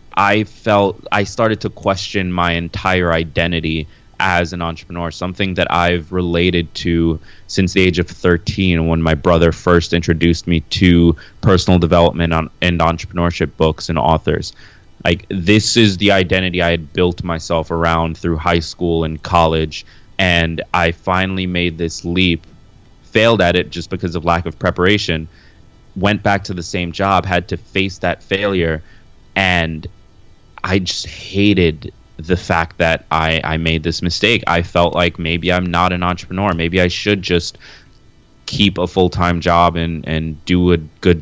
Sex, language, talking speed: male, English, 165 wpm